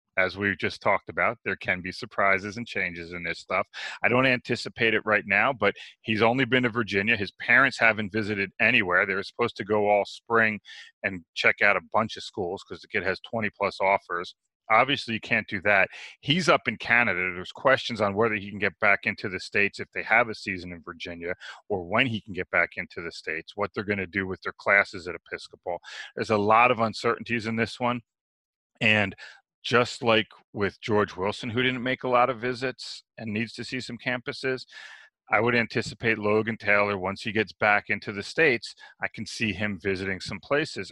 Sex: male